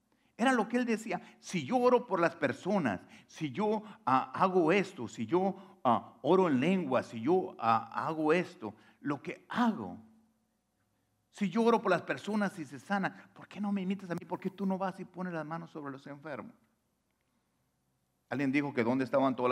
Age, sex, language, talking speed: 50-69, male, English, 195 wpm